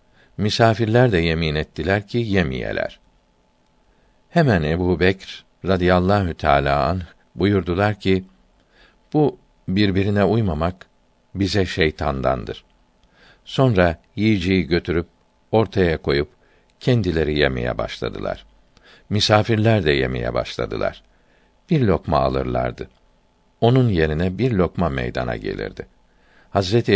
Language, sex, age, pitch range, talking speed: Turkish, male, 60-79, 80-105 Hz, 90 wpm